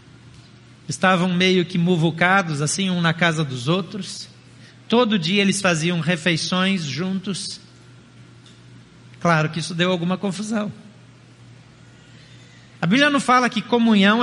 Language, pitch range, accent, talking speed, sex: Portuguese, 170-230 Hz, Brazilian, 120 wpm, male